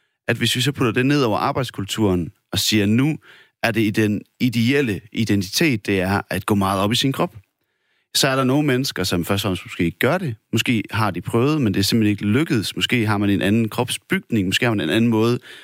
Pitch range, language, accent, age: 95-120 Hz, Danish, native, 30-49